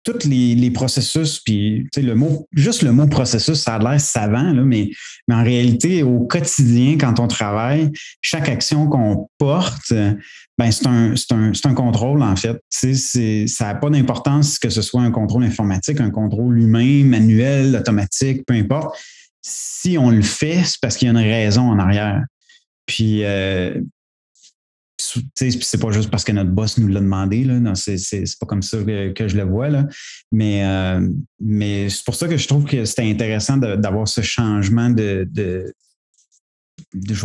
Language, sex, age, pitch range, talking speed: French, male, 30-49, 105-130 Hz, 190 wpm